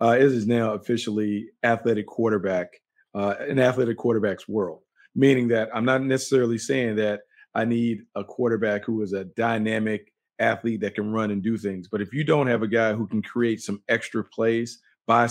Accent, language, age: American, English, 40-59